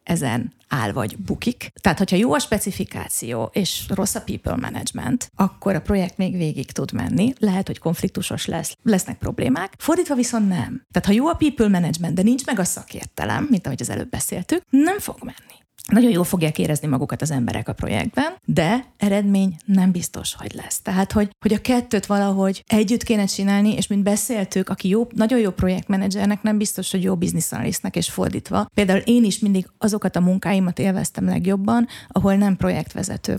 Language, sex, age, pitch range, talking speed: Hungarian, female, 30-49, 175-215 Hz, 180 wpm